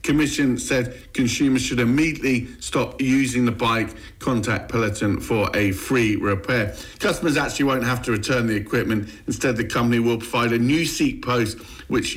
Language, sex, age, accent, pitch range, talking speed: English, male, 50-69, British, 110-135 Hz, 170 wpm